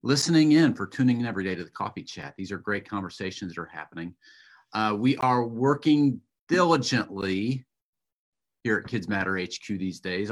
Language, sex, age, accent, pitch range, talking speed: English, male, 40-59, American, 95-125 Hz, 175 wpm